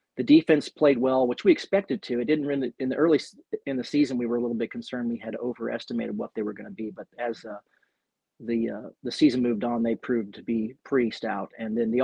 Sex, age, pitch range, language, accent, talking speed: male, 40-59, 120-140 Hz, English, American, 255 wpm